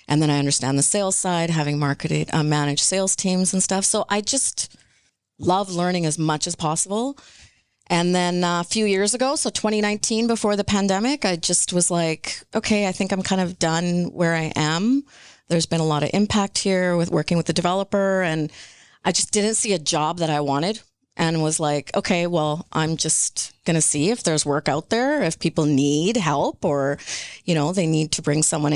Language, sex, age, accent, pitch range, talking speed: English, female, 30-49, American, 155-195 Hz, 205 wpm